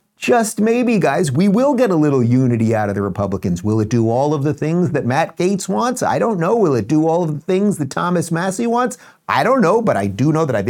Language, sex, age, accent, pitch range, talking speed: English, male, 50-69, American, 105-165 Hz, 265 wpm